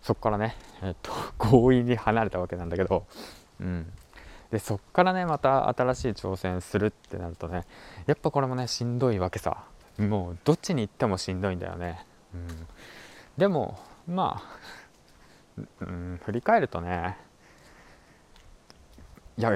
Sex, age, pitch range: male, 20-39, 90-130 Hz